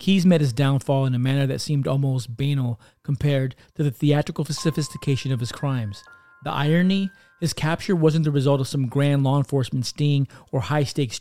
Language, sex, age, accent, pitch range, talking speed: English, male, 40-59, American, 130-155 Hz, 180 wpm